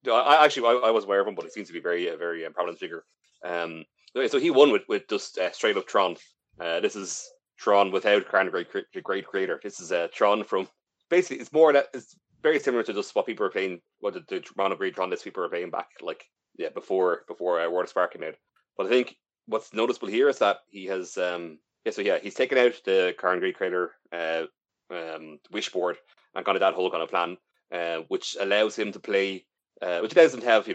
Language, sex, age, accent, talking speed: English, male, 30-49, Irish, 240 wpm